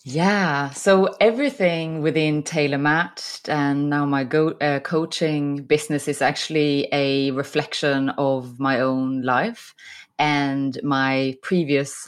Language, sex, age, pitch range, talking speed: English, female, 20-39, 135-160 Hz, 115 wpm